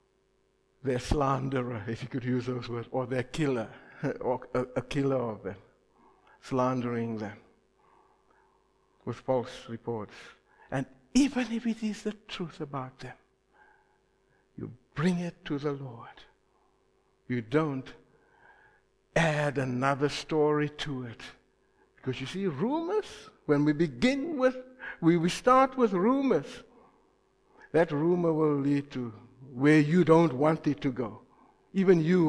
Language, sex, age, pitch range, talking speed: English, male, 60-79, 125-190 Hz, 130 wpm